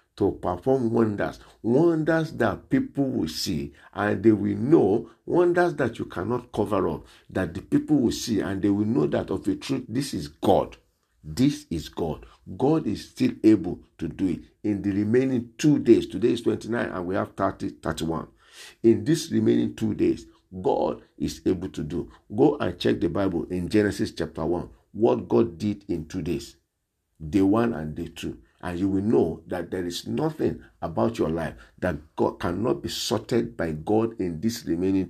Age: 50-69